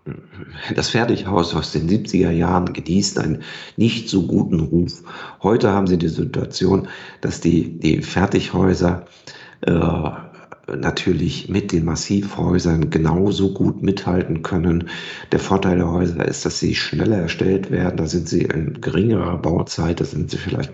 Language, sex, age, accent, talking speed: German, male, 50-69, German, 145 wpm